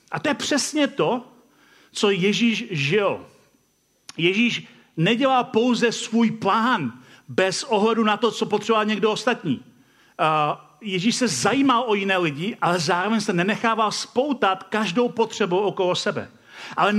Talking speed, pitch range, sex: 130 wpm, 180-230 Hz, male